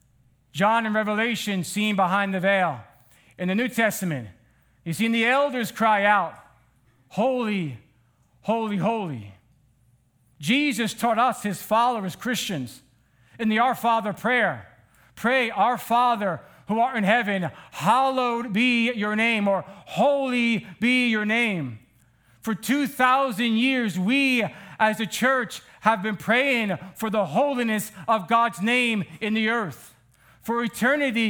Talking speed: 130 wpm